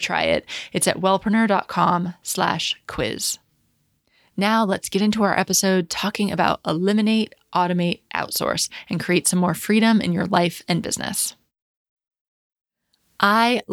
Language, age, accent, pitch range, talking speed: English, 20-39, American, 180-215 Hz, 125 wpm